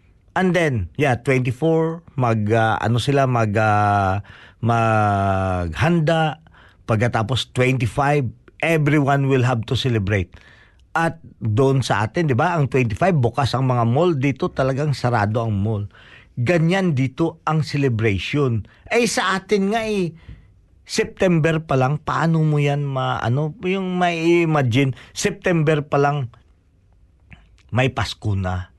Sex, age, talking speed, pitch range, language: male, 40-59, 125 wpm, 110-160 Hz, Filipino